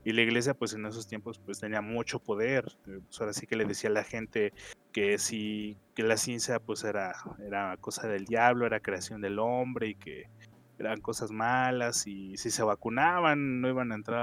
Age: 20-39